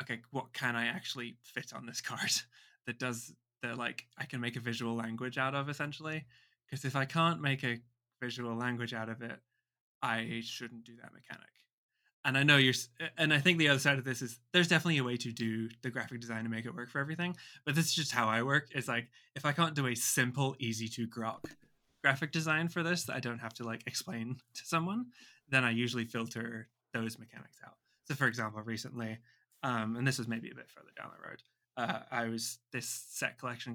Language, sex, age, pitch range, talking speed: English, male, 20-39, 120-150 Hz, 220 wpm